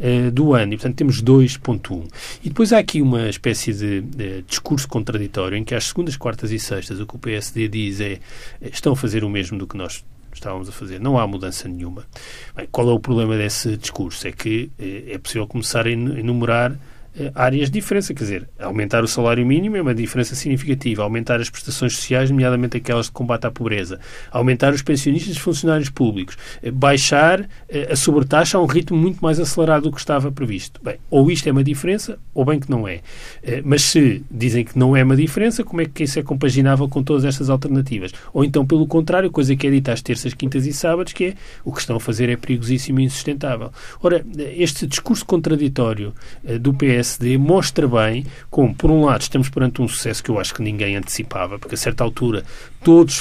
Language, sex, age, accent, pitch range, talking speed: Portuguese, male, 40-59, Brazilian, 115-145 Hz, 205 wpm